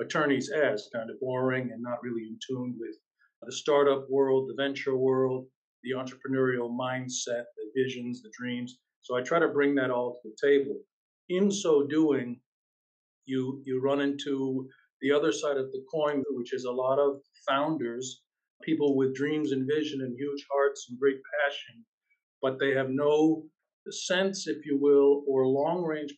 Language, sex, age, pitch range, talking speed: English, male, 50-69, 125-145 Hz, 170 wpm